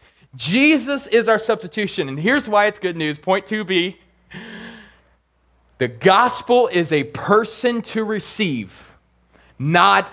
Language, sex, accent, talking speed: English, male, American, 125 wpm